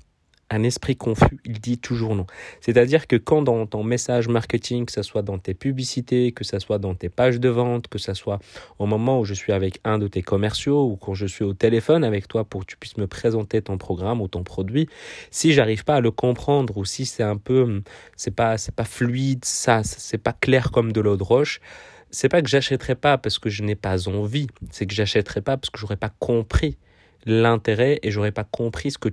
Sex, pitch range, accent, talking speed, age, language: male, 105-125 Hz, French, 245 wpm, 30-49, French